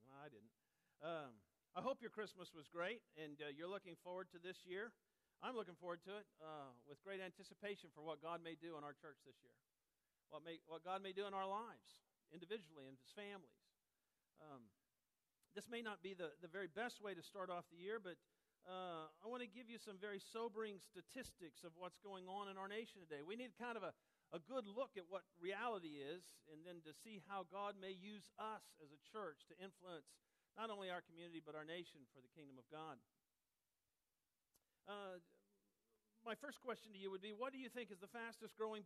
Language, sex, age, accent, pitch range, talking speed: English, male, 50-69, American, 165-220 Hz, 210 wpm